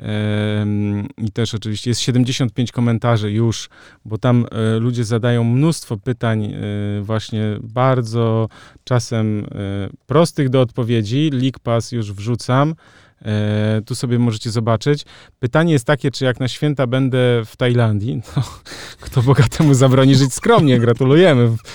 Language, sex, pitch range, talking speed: Polish, male, 110-130 Hz, 120 wpm